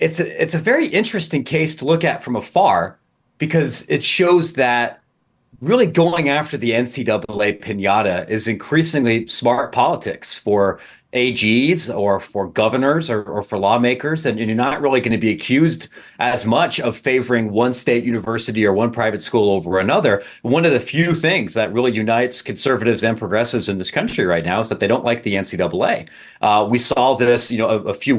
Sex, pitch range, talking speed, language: male, 110-145 Hz, 190 wpm, English